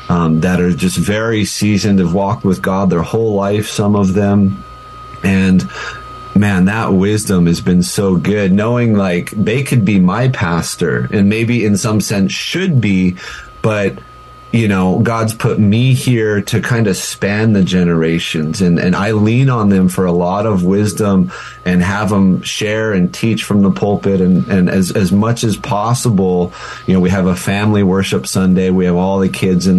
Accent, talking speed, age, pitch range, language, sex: American, 185 wpm, 30-49, 90-110 Hz, English, male